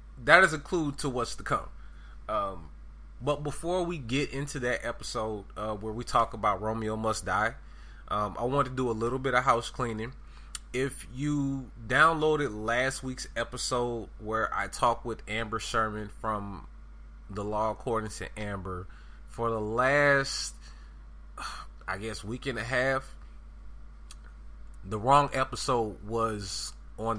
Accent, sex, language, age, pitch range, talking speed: American, male, English, 20-39, 95-125 Hz, 150 wpm